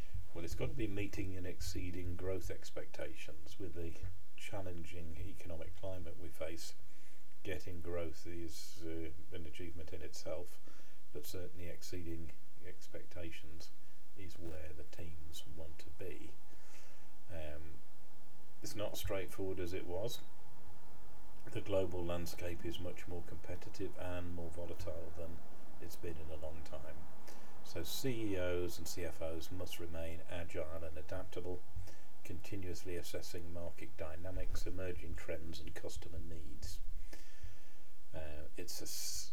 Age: 40-59